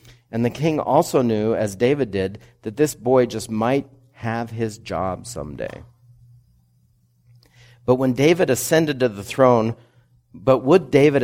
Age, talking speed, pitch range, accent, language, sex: 50-69, 145 wpm, 95-125 Hz, American, English, male